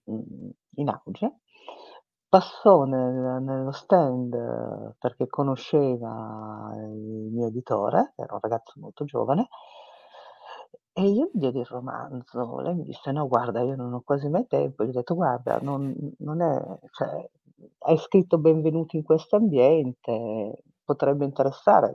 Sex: female